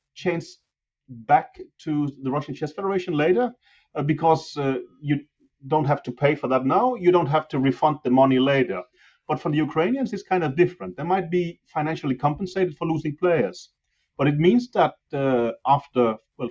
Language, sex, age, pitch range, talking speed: English, male, 30-49, 125-170 Hz, 180 wpm